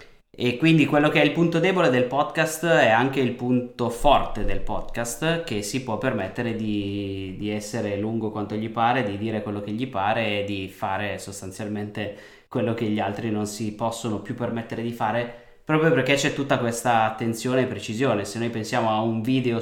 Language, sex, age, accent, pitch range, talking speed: Italian, male, 20-39, native, 105-125 Hz, 195 wpm